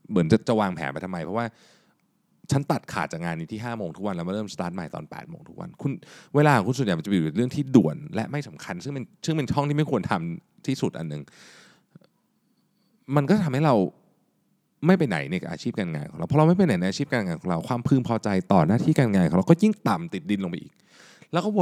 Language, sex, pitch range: Thai, male, 110-180 Hz